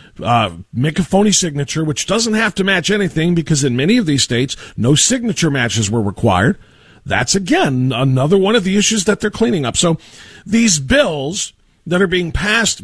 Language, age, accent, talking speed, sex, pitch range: English, 50-69, American, 185 wpm, male, 115-180 Hz